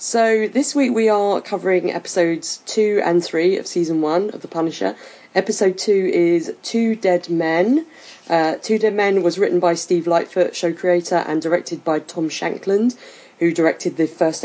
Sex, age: female, 30-49